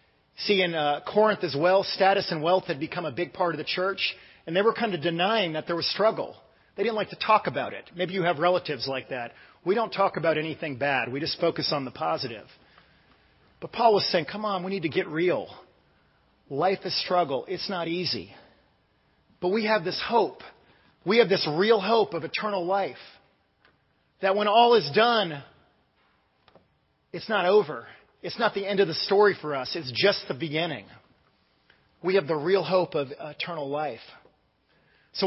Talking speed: 190 wpm